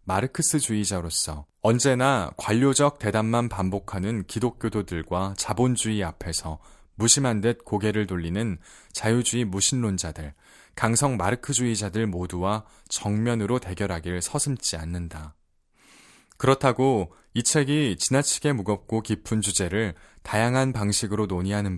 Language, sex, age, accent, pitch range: Korean, male, 20-39, native, 95-125 Hz